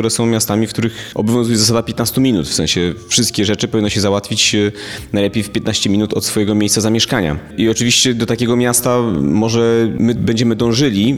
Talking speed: 175 wpm